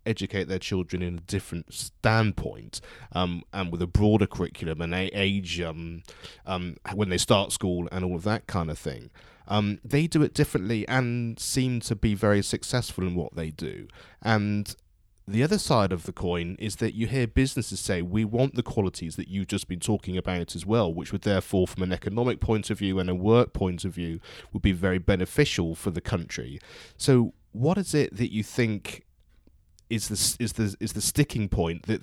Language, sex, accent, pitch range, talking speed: English, male, British, 95-115 Hz, 200 wpm